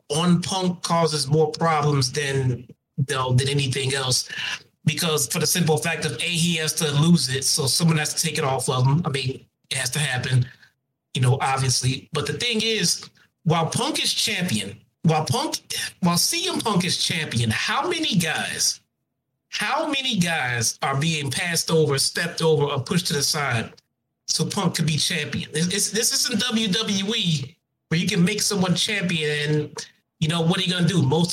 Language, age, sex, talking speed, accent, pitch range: English, 30-49, male, 180 wpm, American, 140-175 Hz